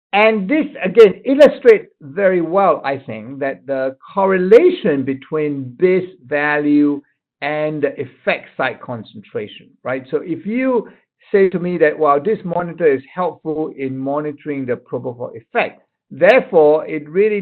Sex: male